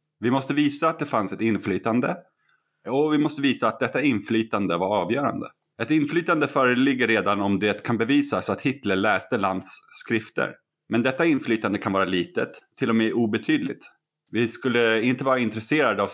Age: 30-49